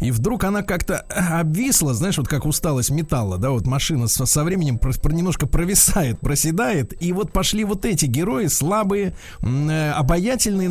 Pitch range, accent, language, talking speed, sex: 125-185 Hz, native, Russian, 145 wpm, male